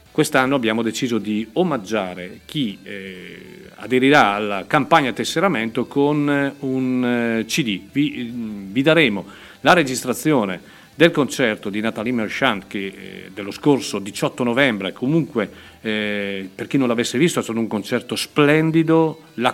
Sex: male